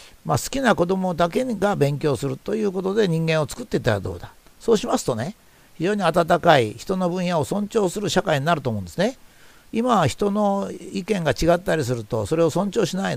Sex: male